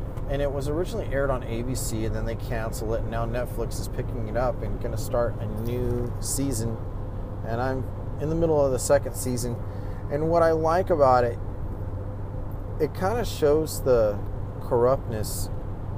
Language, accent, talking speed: English, American, 175 wpm